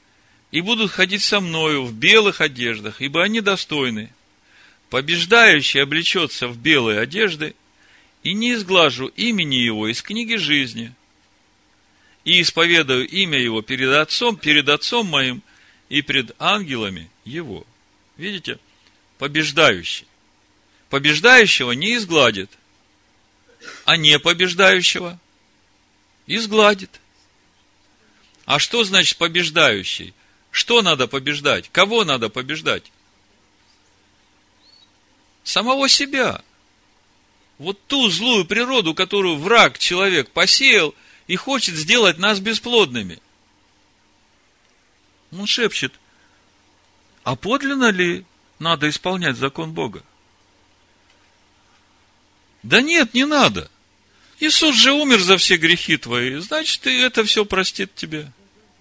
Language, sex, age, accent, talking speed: Russian, male, 50-69, native, 100 wpm